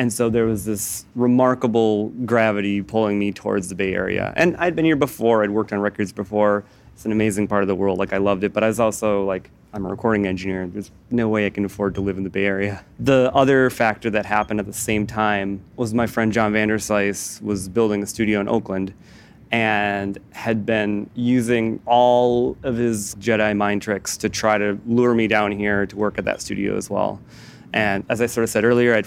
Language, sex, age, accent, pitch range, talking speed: English, male, 20-39, American, 100-115 Hz, 220 wpm